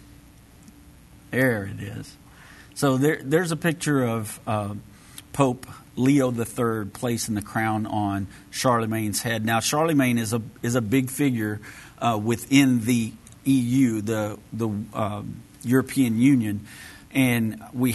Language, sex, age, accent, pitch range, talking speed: English, male, 50-69, American, 105-130 Hz, 130 wpm